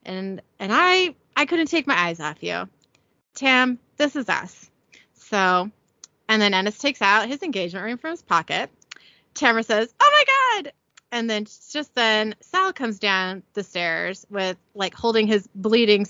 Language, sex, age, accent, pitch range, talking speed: English, female, 30-49, American, 195-265 Hz, 170 wpm